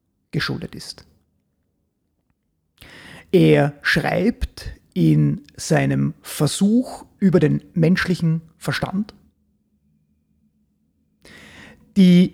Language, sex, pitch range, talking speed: German, male, 150-220 Hz, 60 wpm